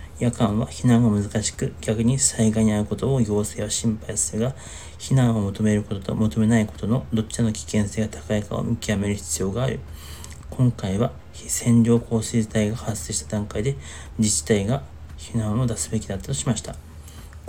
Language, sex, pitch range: Japanese, male, 80-115 Hz